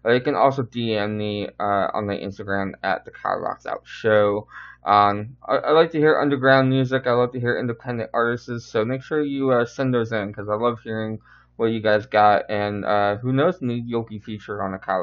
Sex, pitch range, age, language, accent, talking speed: male, 110-140 Hz, 20-39, English, American, 220 wpm